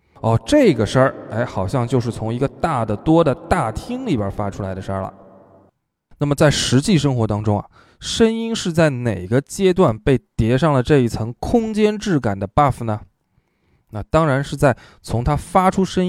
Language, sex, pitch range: Chinese, male, 110-170 Hz